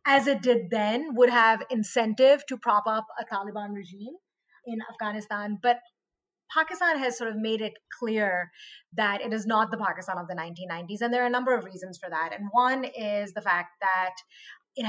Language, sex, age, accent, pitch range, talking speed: English, female, 30-49, Indian, 195-245 Hz, 195 wpm